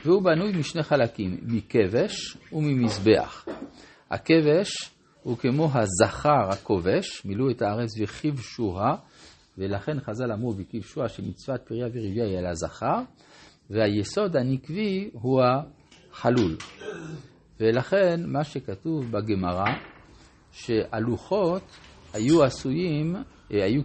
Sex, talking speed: male, 95 wpm